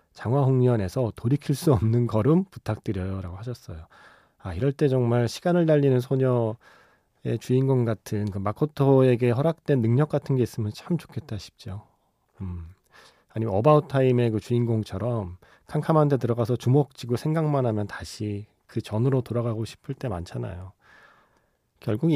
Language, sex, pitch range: Korean, male, 105-140 Hz